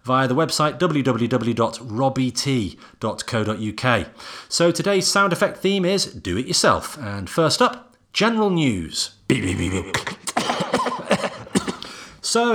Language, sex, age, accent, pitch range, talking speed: English, male, 30-49, British, 110-160 Hz, 90 wpm